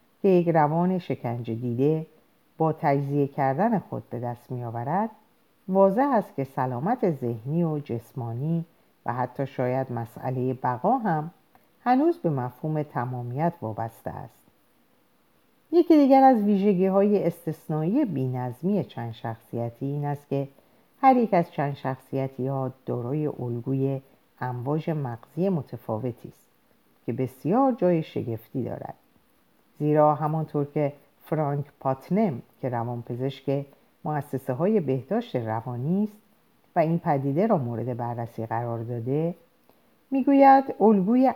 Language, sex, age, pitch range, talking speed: Persian, female, 50-69, 125-175 Hz, 120 wpm